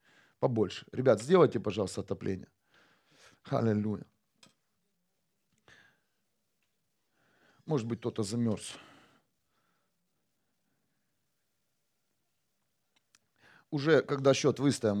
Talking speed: 55 wpm